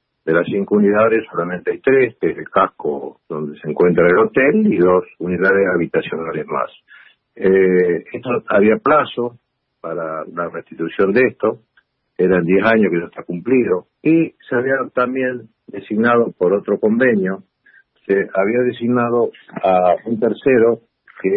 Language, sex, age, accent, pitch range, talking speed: Spanish, male, 50-69, Argentinian, 95-135 Hz, 145 wpm